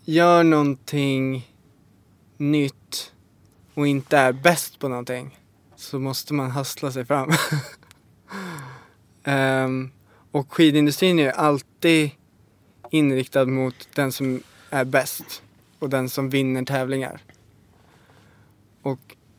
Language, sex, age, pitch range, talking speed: English, male, 20-39, 125-145 Hz, 100 wpm